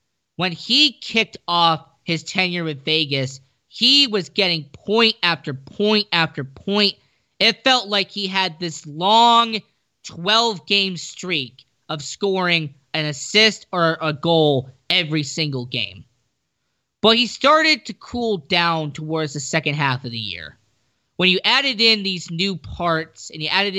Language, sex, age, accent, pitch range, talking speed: English, male, 20-39, American, 145-195 Hz, 145 wpm